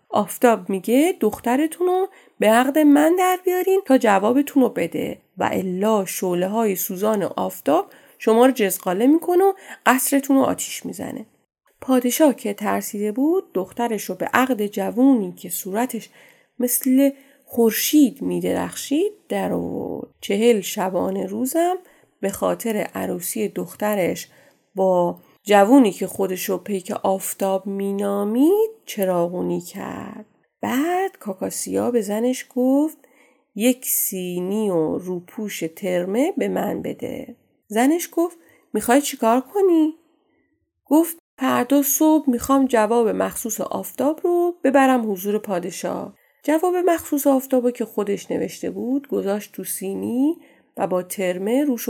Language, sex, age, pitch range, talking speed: Persian, female, 30-49, 195-280 Hz, 120 wpm